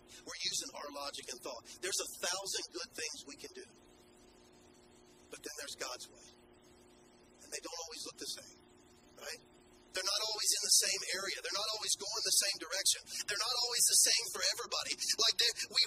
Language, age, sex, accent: English, 40-59, male, American